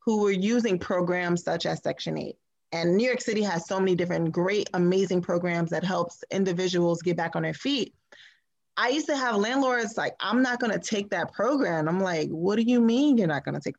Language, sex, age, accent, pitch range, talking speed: English, female, 20-39, American, 180-235 Hz, 215 wpm